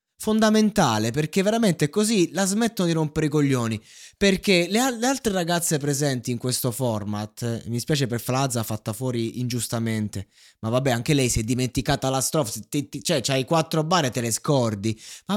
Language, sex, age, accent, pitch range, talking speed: Italian, male, 20-39, native, 115-165 Hz, 190 wpm